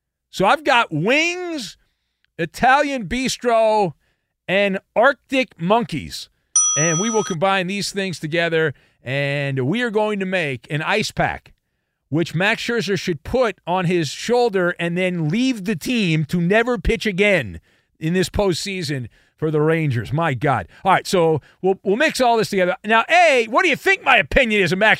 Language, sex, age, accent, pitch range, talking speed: English, male, 40-59, American, 165-255 Hz, 170 wpm